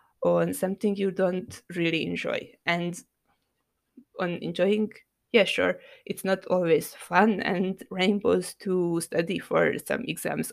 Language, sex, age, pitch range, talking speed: English, female, 20-39, 175-210 Hz, 125 wpm